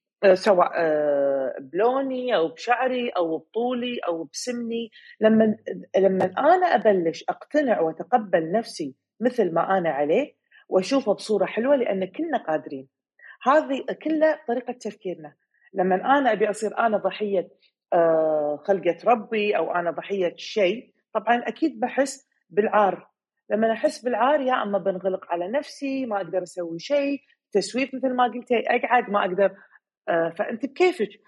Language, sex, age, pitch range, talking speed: Arabic, female, 40-59, 180-250 Hz, 125 wpm